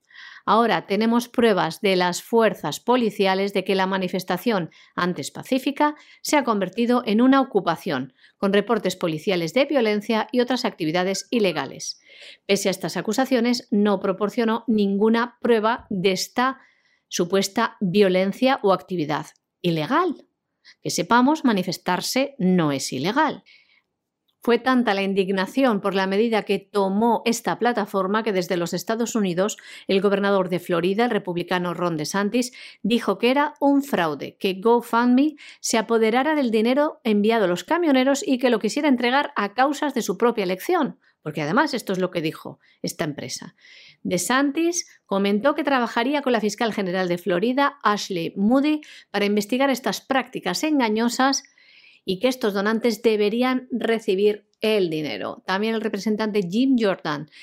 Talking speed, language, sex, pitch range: 145 wpm, Spanish, female, 190-250 Hz